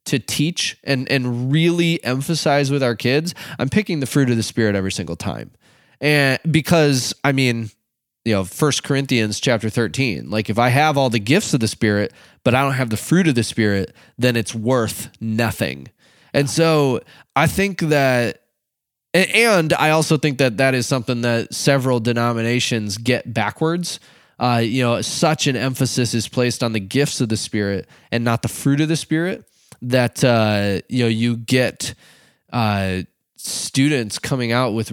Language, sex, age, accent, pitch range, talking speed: English, male, 20-39, American, 115-140 Hz, 175 wpm